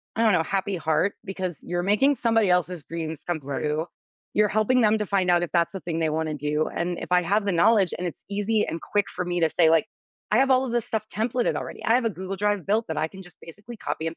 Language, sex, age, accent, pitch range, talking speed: English, female, 30-49, American, 165-215 Hz, 265 wpm